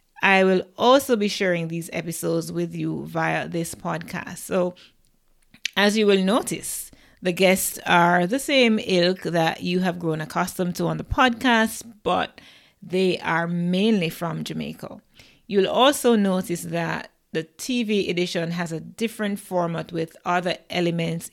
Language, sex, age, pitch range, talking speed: English, female, 30-49, 170-200 Hz, 145 wpm